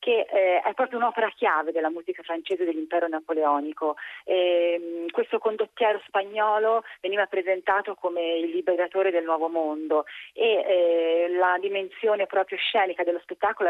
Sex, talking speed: female, 125 wpm